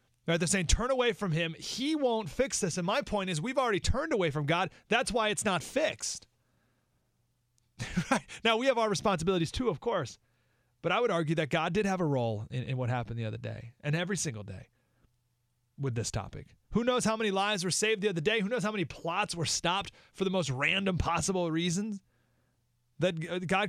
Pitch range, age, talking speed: 120-170 Hz, 30-49, 215 wpm